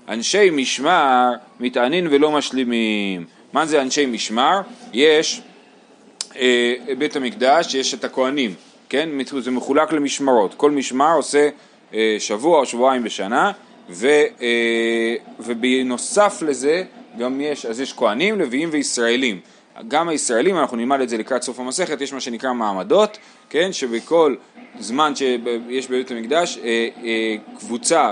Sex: male